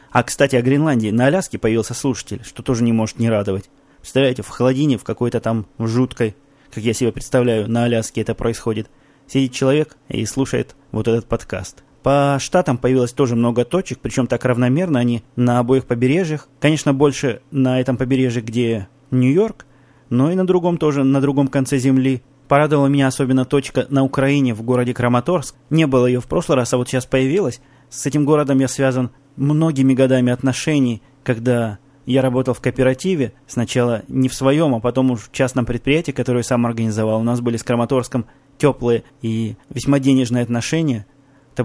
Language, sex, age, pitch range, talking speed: Russian, male, 20-39, 120-135 Hz, 175 wpm